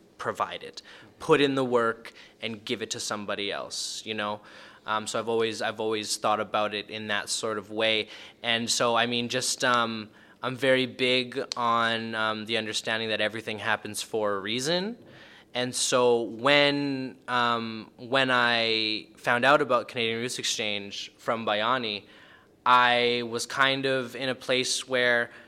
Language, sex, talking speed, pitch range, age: English, male, 165 wpm, 110-130 Hz, 20-39